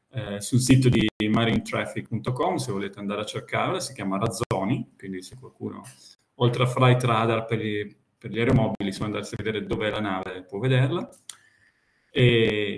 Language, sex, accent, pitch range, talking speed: Italian, male, native, 100-125 Hz, 160 wpm